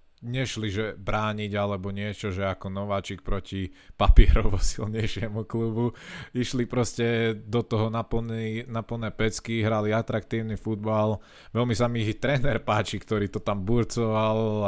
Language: Slovak